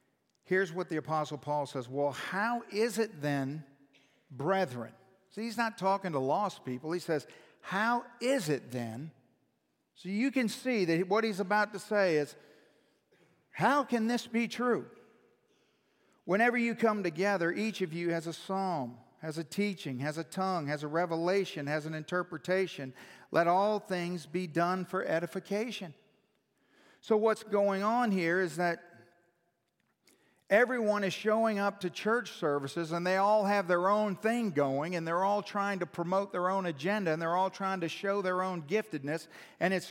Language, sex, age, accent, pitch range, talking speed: English, male, 50-69, American, 150-200 Hz, 170 wpm